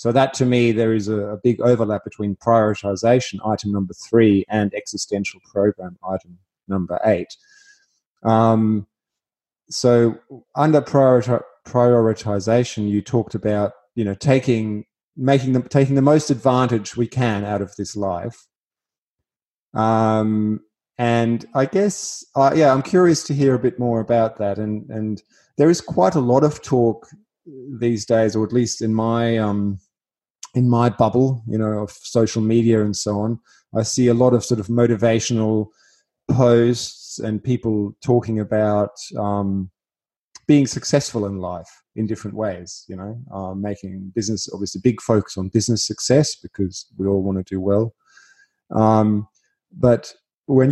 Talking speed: 155 wpm